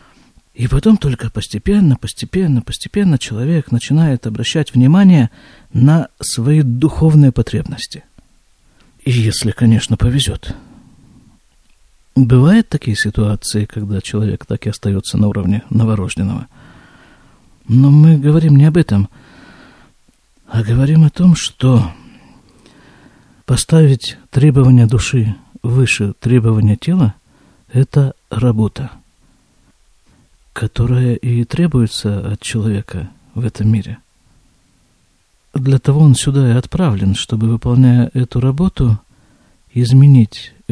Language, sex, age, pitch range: Russian, male, 50-69, 110-135 Hz